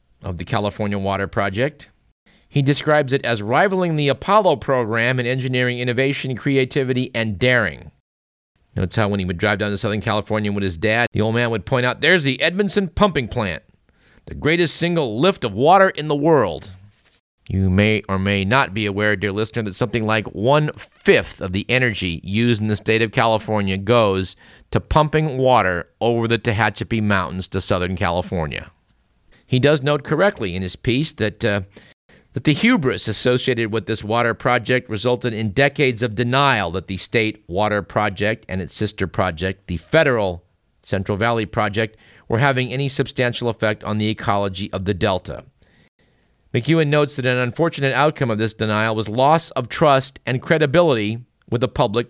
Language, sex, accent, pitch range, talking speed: English, male, American, 100-130 Hz, 175 wpm